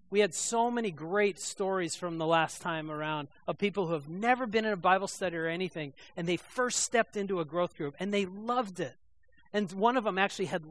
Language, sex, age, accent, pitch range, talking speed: English, male, 40-59, American, 155-200 Hz, 230 wpm